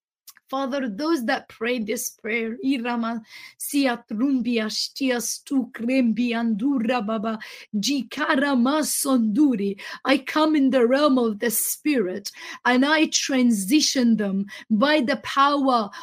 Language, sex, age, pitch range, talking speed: English, female, 30-49, 240-315 Hz, 80 wpm